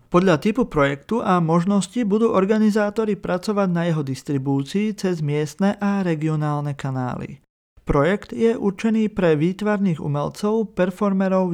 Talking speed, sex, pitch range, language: 120 wpm, male, 145-200 Hz, Slovak